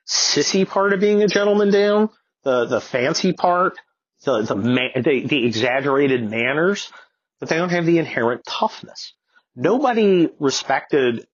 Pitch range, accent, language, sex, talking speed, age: 120-195 Hz, American, English, male, 145 wpm, 40-59